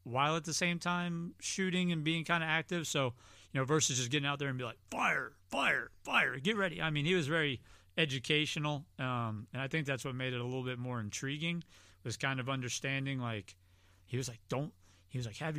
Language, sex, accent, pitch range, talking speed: English, male, American, 120-160 Hz, 225 wpm